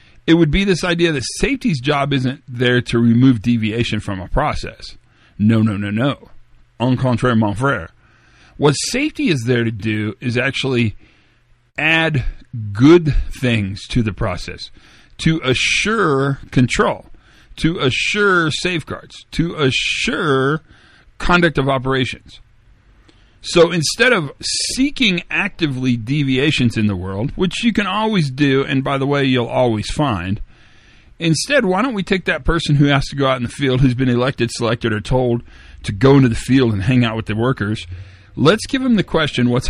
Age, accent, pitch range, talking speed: 40-59, American, 110-150 Hz, 165 wpm